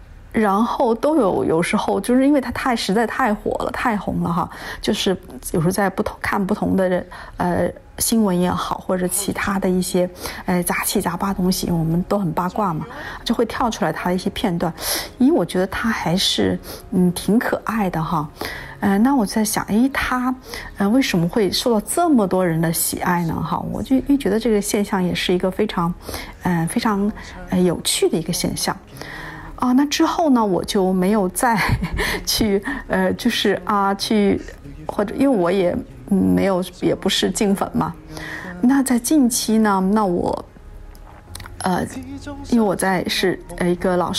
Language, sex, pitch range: Chinese, female, 180-230 Hz